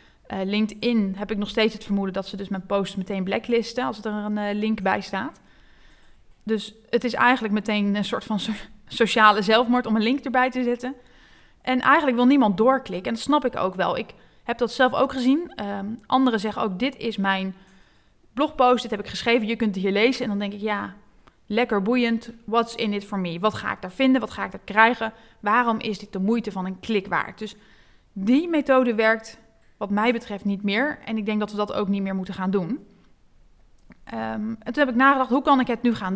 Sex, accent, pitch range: female, Dutch, 210-255 Hz